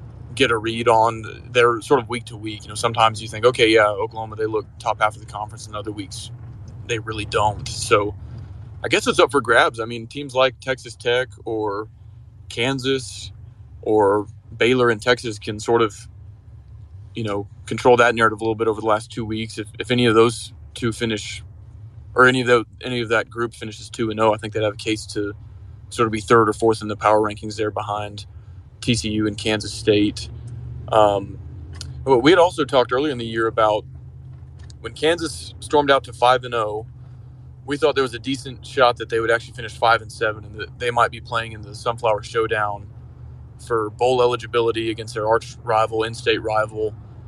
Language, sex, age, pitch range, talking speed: English, male, 20-39, 105-120 Hz, 200 wpm